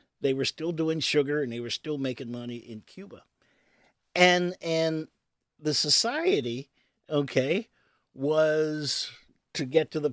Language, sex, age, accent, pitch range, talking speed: English, male, 50-69, American, 135-190 Hz, 135 wpm